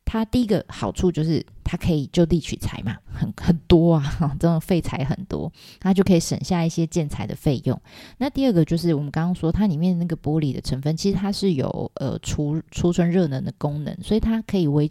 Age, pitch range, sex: 20-39, 145-185 Hz, female